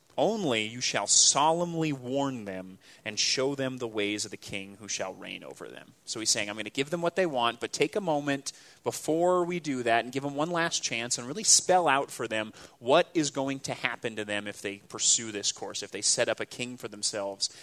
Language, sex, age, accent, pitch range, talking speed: English, male, 30-49, American, 105-145 Hz, 240 wpm